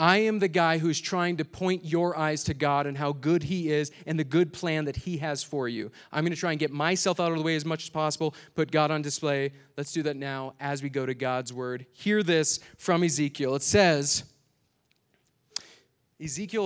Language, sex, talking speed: English, male, 225 wpm